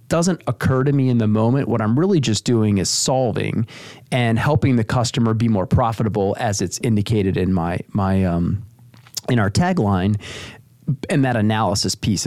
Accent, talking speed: American, 170 wpm